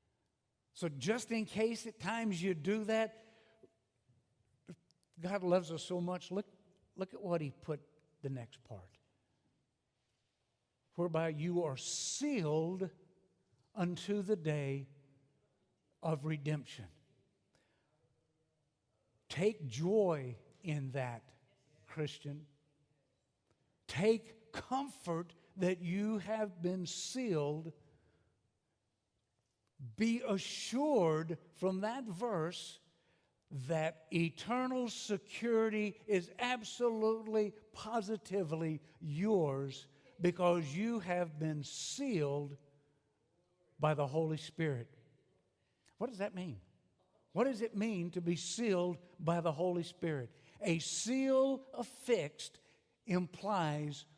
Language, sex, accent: English, male, American